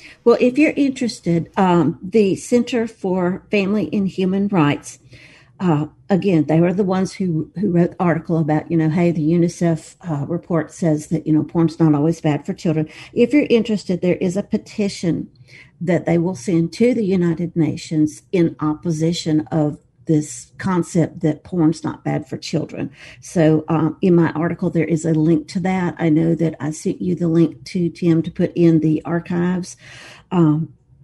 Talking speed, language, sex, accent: 180 wpm, English, female, American